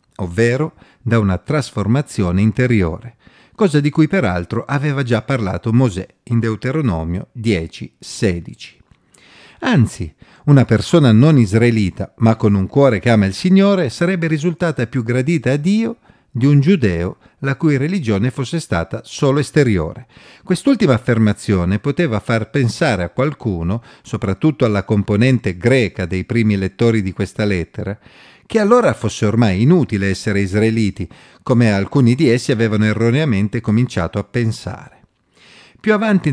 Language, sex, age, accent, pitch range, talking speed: Italian, male, 40-59, native, 100-135 Hz, 130 wpm